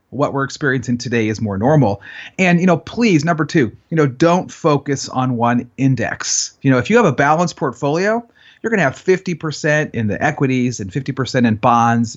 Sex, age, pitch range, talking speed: male, 30-49, 125-175 Hz, 205 wpm